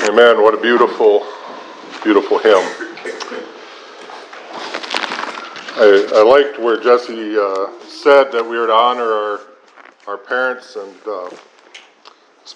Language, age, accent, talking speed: English, 50-69, American, 115 wpm